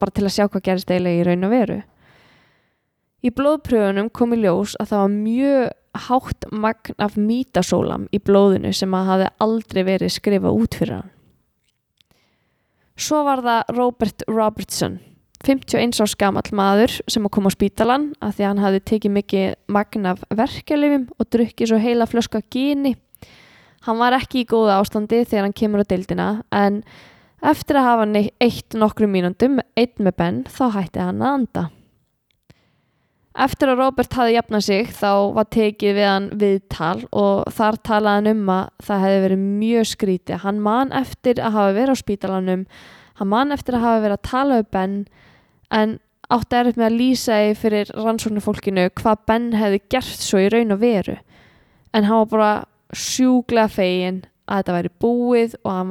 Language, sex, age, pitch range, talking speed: English, female, 20-39, 195-235 Hz, 170 wpm